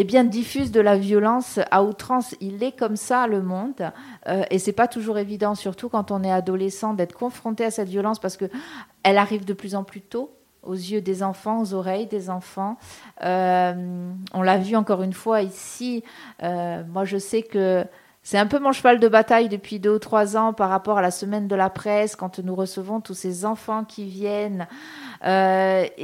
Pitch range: 195-225 Hz